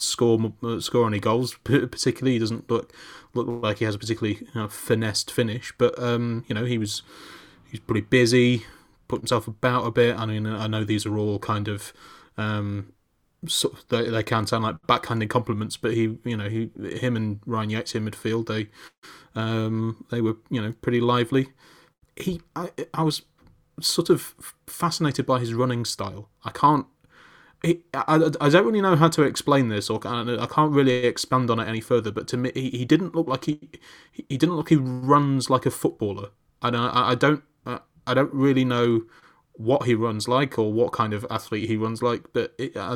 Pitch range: 110-130 Hz